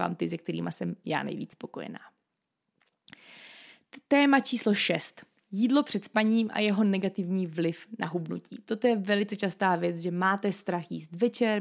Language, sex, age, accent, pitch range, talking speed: Czech, female, 20-39, native, 180-210 Hz, 150 wpm